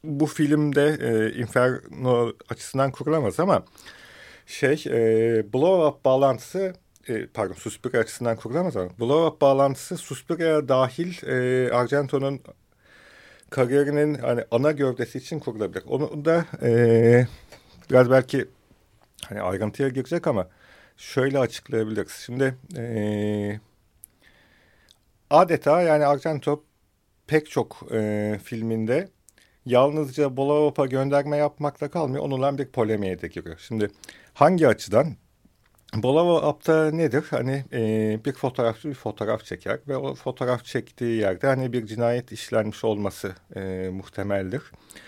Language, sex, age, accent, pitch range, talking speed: Turkish, male, 50-69, native, 110-145 Hz, 115 wpm